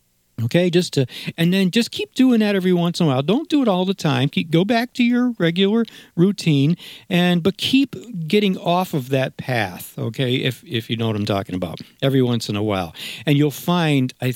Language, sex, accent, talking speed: English, male, American, 220 wpm